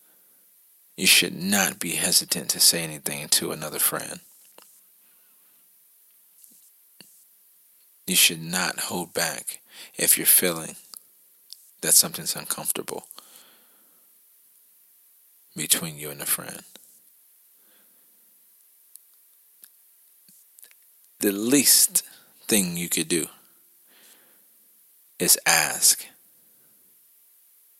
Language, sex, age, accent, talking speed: English, male, 40-59, American, 75 wpm